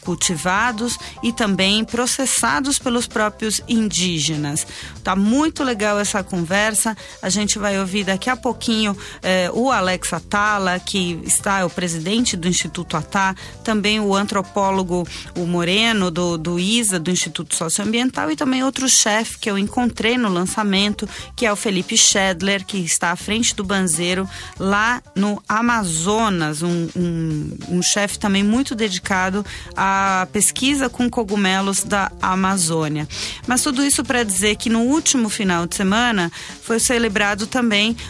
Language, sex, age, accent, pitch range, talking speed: Portuguese, female, 30-49, Brazilian, 190-235 Hz, 145 wpm